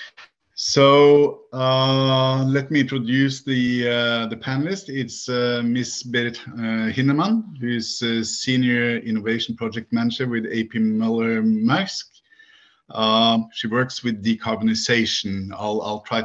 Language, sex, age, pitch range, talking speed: English, male, 50-69, 110-130 Hz, 125 wpm